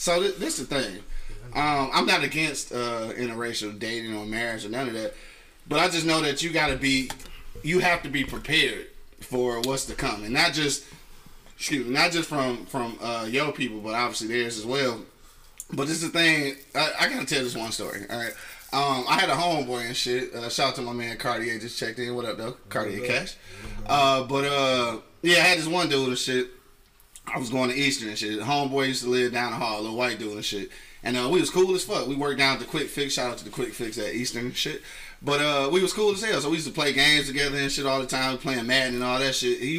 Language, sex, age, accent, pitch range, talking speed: English, male, 20-39, American, 120-140 Hz, 260 wpm